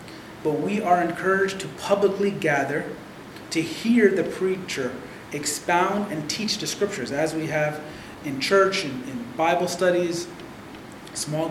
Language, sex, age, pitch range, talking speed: English, male, 30-49, 155-190 Hz, 135 wpm